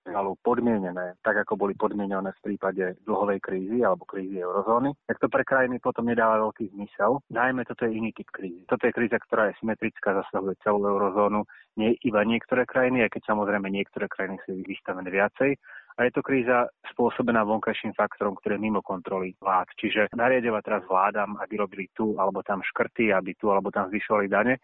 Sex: male